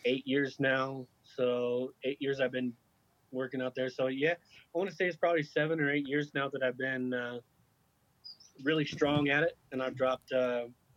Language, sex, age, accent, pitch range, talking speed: English, male, 20-39, American, 125-140 Hz, 195 wpm